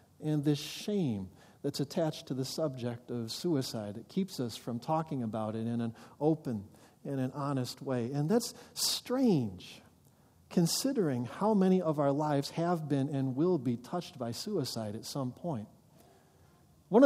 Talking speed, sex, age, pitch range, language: 160 wpm, male, 50-69, 130-180 Hz, English